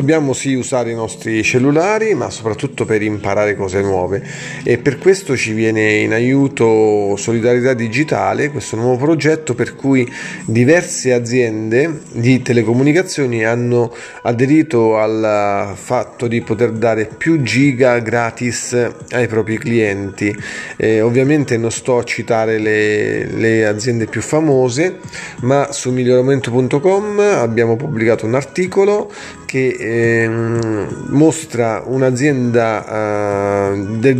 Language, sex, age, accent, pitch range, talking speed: Italian, male, 30-49, native, 110-130 Hz, 115 wpm